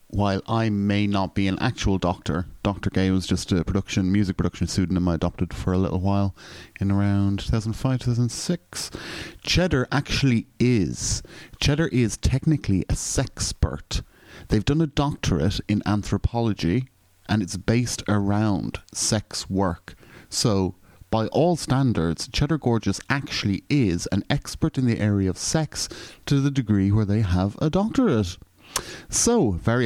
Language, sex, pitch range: English, male, 95-120 Hz